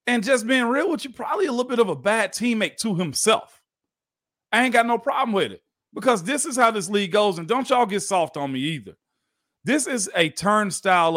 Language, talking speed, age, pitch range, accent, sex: English, 225 wpm, 40-59, 180-245 Hz, American, male